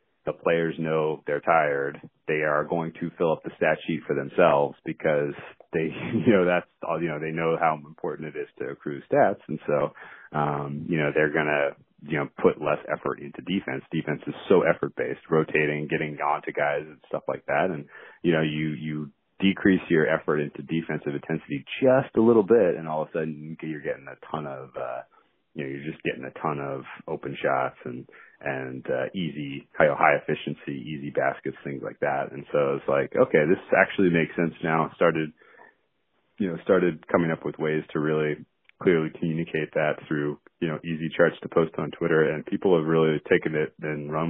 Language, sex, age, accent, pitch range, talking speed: English, male, 30-49, American, 75-80 Hz, 200 wpm